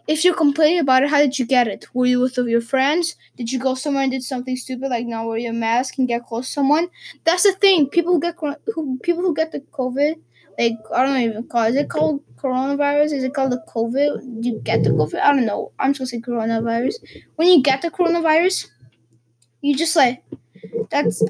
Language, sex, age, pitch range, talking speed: English, female, 10-29, 245-305 Hz, 230 wpm